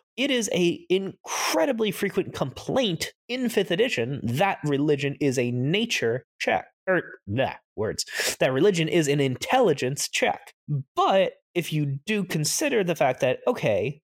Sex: male